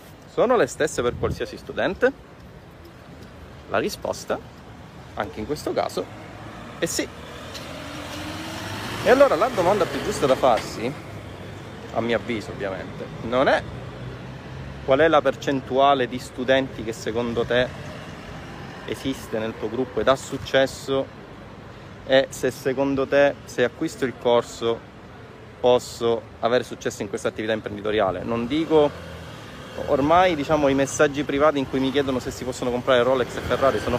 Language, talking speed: Italian, 140 wpm